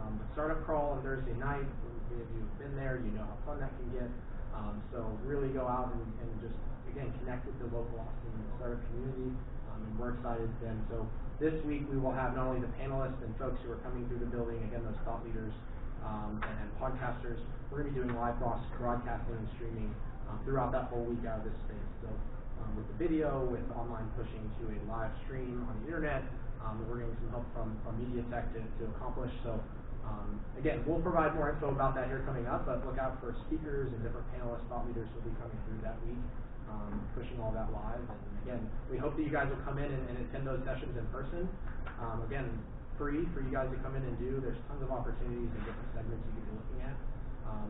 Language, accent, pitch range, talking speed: English, American, 110-130 Hz, 230 wpm